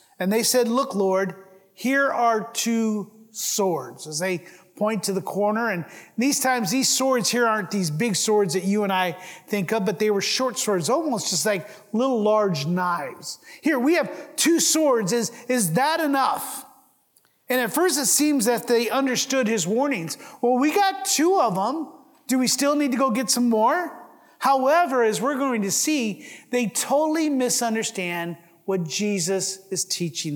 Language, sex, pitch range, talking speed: English, male, 195-260 Hz, 175 wpm